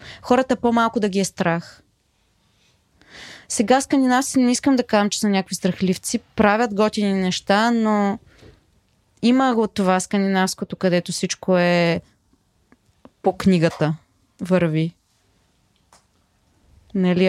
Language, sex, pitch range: Bulgarian, female, 175-220 Hz